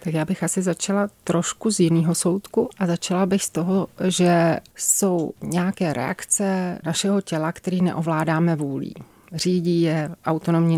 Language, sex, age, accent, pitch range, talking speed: Czech, female, 30-49, native, 160-195 Hz, 145 wpm